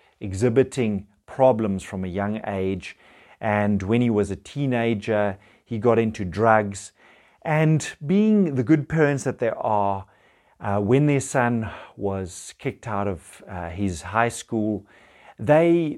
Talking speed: 140 wpm